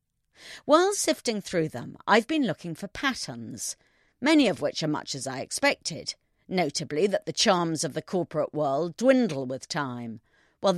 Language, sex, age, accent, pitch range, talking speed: English, female, 40-59, British, 140-235 Hz, 160 wpm